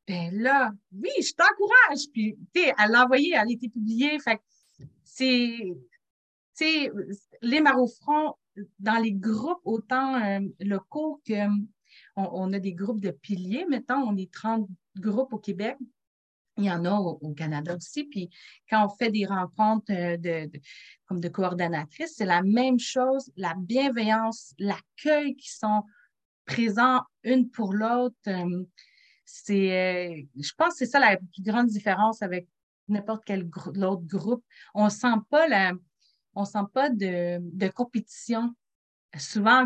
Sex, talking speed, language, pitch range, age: female, 155 wpm, French, 195-260 Hz, 30-49